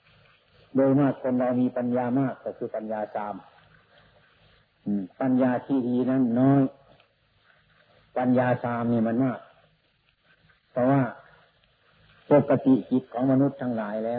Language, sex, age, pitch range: Thai, male, 50-69, 115-135 Hz